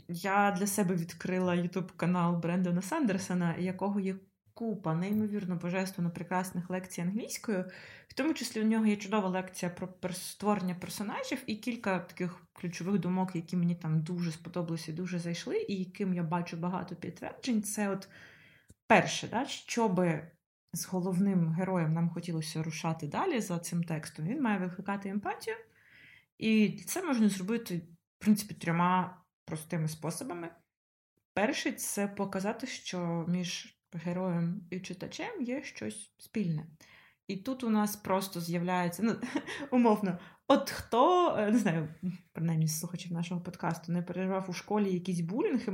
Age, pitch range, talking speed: 20-39, 170-205 Hz, 140 wpm